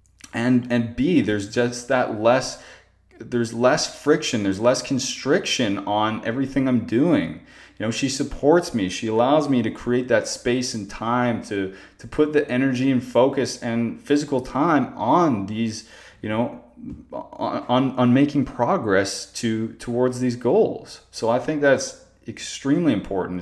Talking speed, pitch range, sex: 150 wpm, 100-125 Hz, male